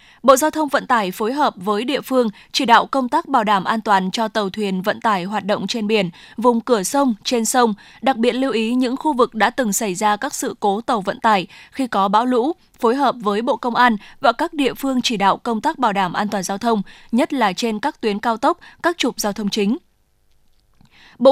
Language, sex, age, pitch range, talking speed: Vietnamese, female, 20-39, 210-265 Hz, 240 wpm